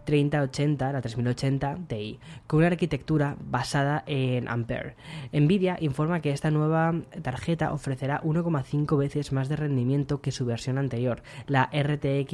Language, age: Spanish, 10-29